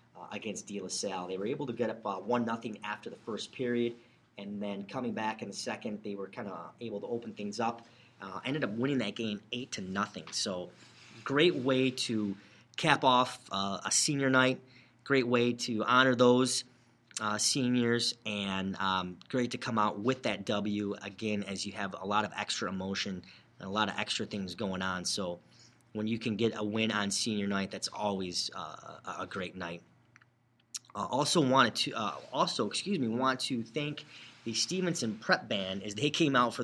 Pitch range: 100-120 Hz